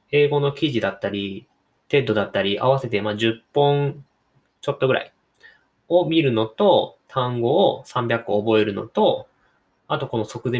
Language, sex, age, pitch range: Japanese, male, 20-39, 110-165 Hz